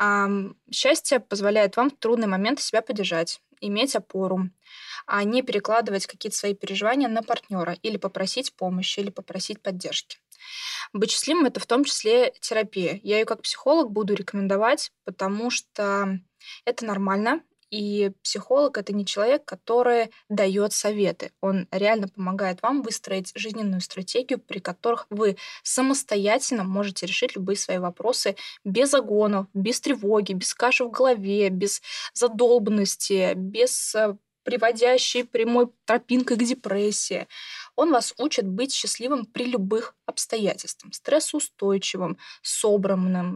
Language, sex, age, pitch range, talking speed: Russian, female, 20-39, 195-245 Hz, 125 wpm